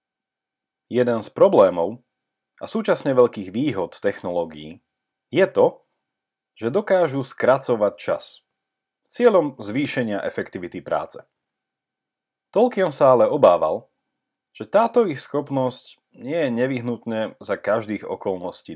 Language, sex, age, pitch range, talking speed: Slovak, male, 30-49, 115-165 Hz, 105 wpm